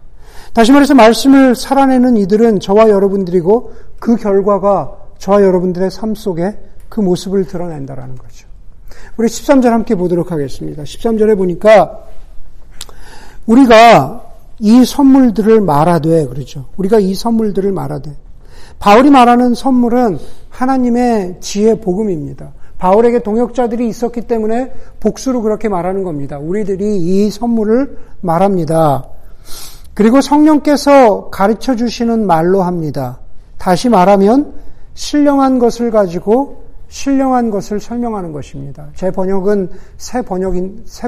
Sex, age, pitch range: male, 50-69, 185-240 Hz